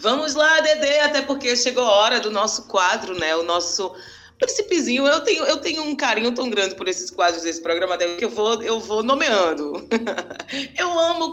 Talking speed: 200 wpm